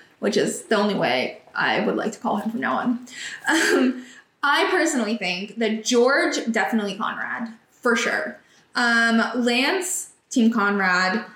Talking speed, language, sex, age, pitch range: 150 wpm, English, female, 20-39, 220-275 Hz